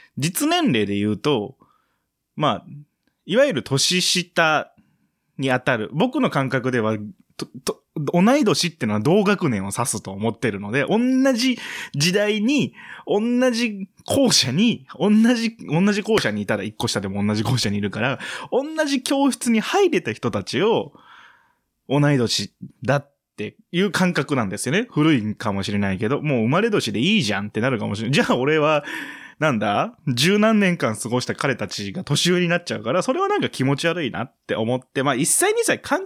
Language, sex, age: Japanese, male, 20-39